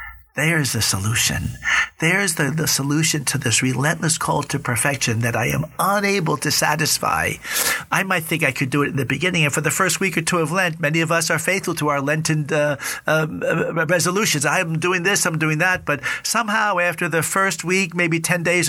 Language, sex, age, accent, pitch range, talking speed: English, male, 50-69, American, 135-170 Hz, 205 wpm